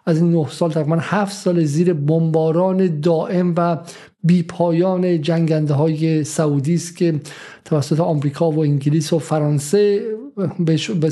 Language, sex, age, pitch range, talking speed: Persian, male, 50-69, 150-175 Hz, 125 wpm